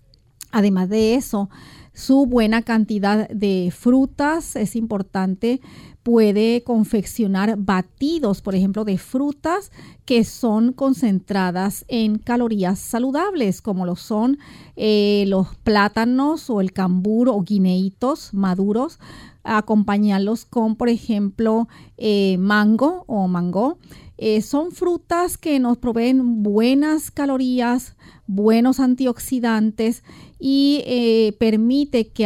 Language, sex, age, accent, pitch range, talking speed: Spanish, female, 40-59, American, 200-245 Hz, 105 wpm